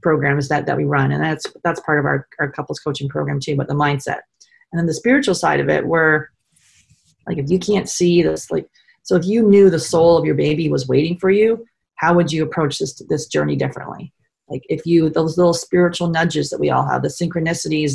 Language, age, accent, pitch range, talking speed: English, 30-49, American, 145-170 Hz, 225 wpm